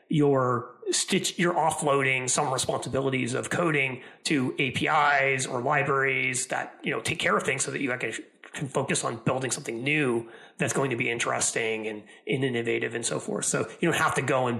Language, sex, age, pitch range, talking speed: English, male, 30-49, 130-160 Hz, 195 wpm